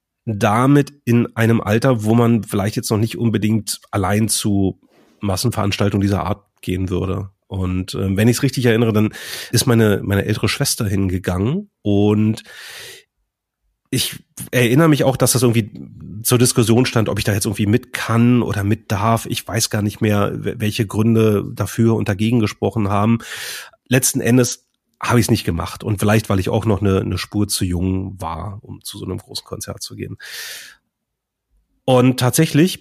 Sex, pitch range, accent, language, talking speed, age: male, 105-125 Hz, German, German, 170 wpm, 30-49